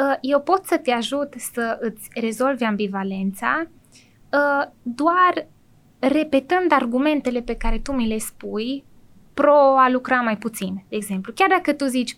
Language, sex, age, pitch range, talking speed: Romanian, female, 20-39, 215-280 Hz, 145 wpm